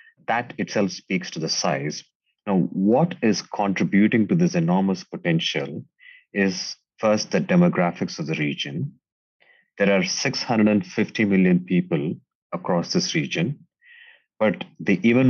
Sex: male